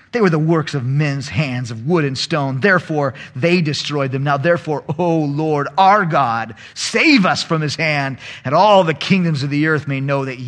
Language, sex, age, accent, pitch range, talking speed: English, male, 40-59, American, 140-180 Hz, 205 wpm